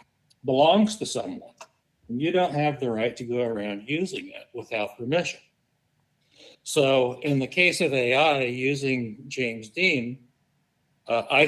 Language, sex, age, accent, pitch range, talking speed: English, male, 60-79, American, 105-135 Hz, 140 wpm